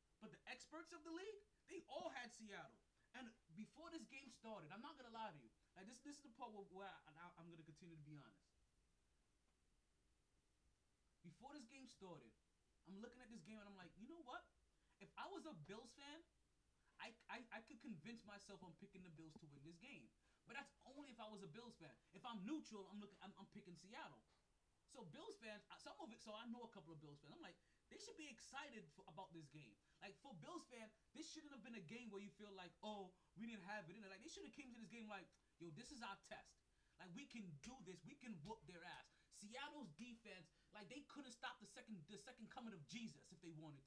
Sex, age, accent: male, 20-39, American